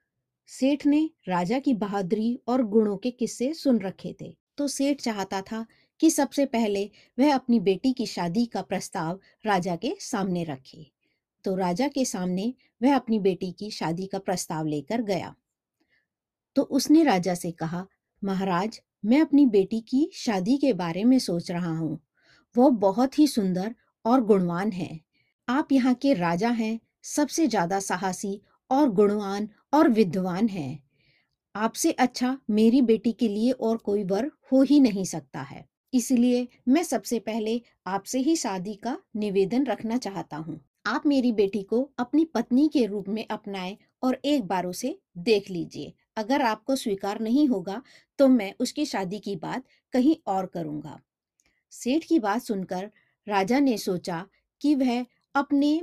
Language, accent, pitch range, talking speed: Hindi, native, 195-265 Hz, 115 wpm